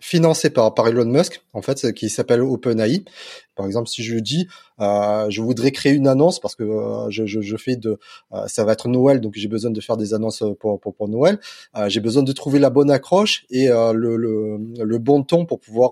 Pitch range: 115-145 Hz